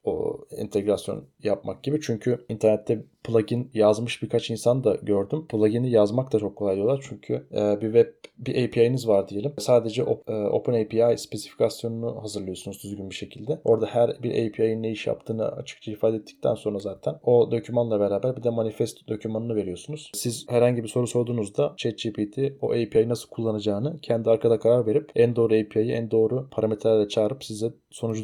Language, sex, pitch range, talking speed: Turkish, male, 105-125 Hz, 160 wpm